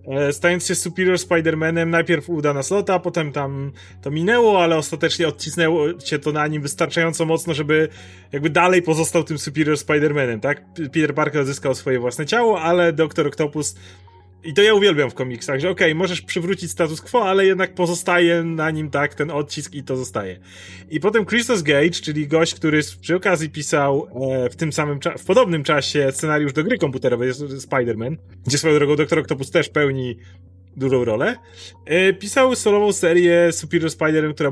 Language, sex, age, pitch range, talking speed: Polish, male, 30-49, 135-170 Hz, 170 wpm